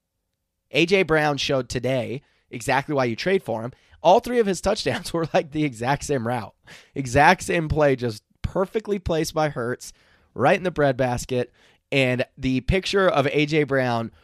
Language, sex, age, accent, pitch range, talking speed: English, male, 20-39, American, 105-145 Hz, 165 wpm